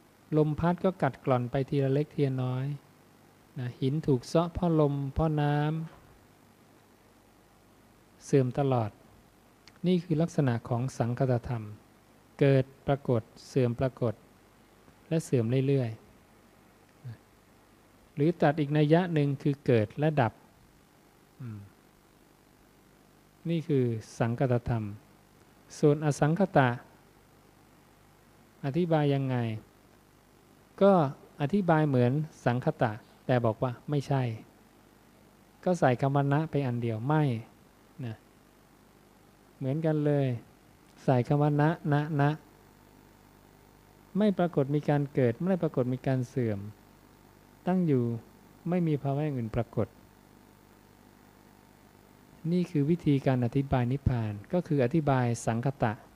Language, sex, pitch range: English, male, 115-150 Hz